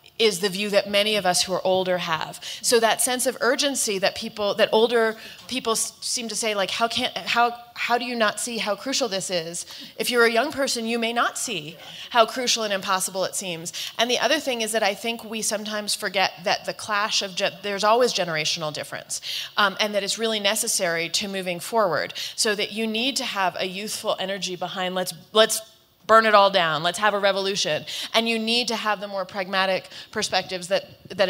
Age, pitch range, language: 30-49, 180-225 Hz, English